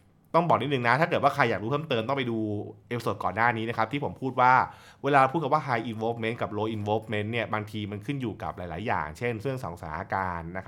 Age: 20-39